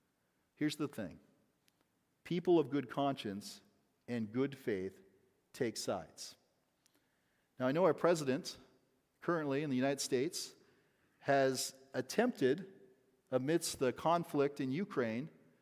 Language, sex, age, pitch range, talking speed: English, male, 40-59, 125-165 Hz, 110 wpm